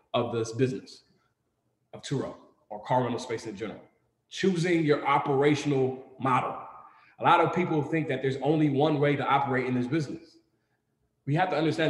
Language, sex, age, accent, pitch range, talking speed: English, male, 20-39, American, 135-175 Hz, 170 wpm